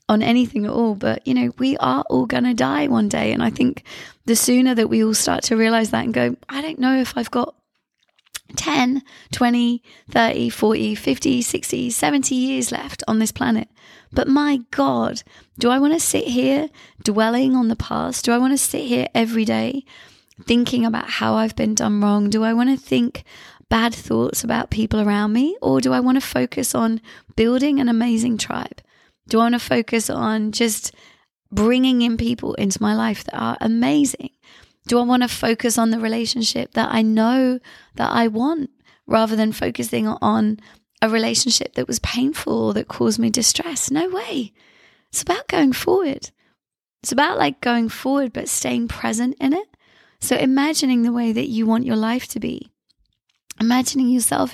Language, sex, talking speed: English, female, 185 wpm